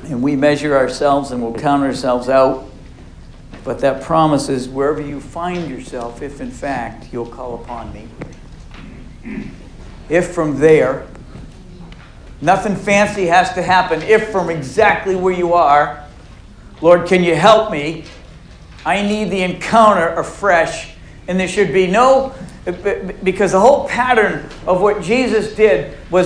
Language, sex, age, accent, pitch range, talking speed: English, male, 60-79, American, 140-195 Hz, 140 wpm